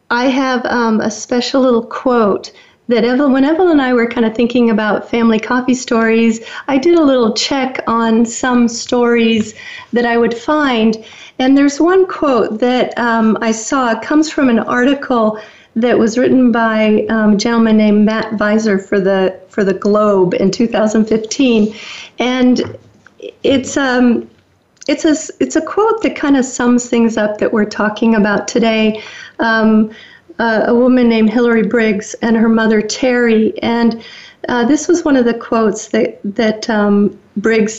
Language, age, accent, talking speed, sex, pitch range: English, 40-59, American, 165 wpm, female, 220-255 Hz